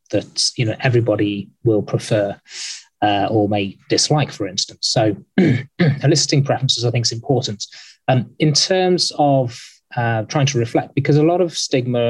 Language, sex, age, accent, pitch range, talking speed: English, male, 20-39, British, 115-140 Hz, 160 wpm